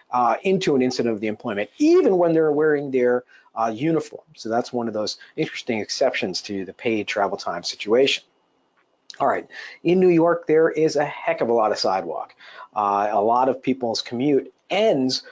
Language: English